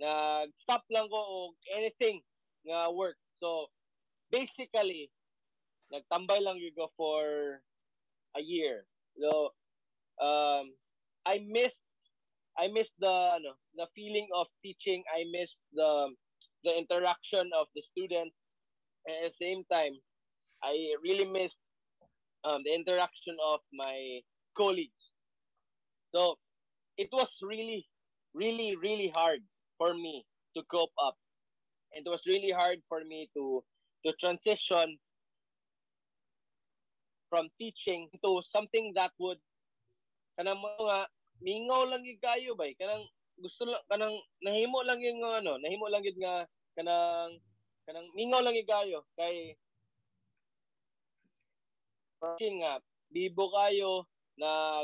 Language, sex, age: English, male, 20-39